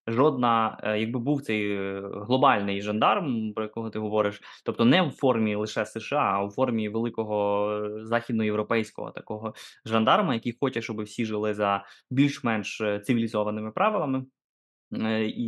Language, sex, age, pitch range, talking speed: Ukrainian, male, 20-39, 105-125 Hz, 130 wpm